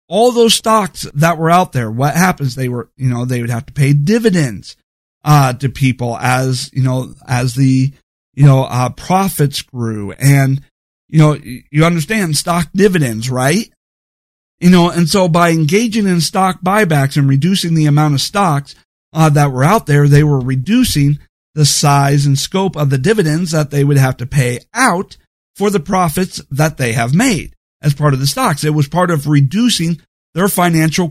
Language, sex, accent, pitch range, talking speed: English, male, American, 140-185 Hz, 185 wpm